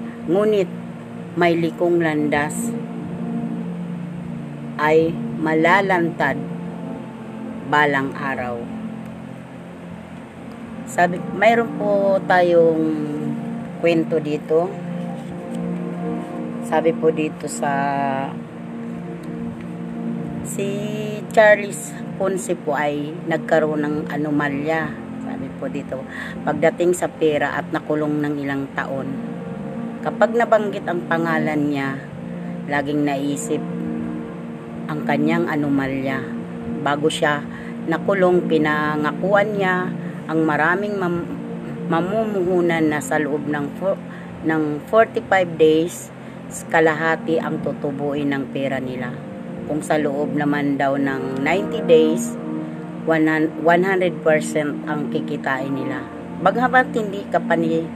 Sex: female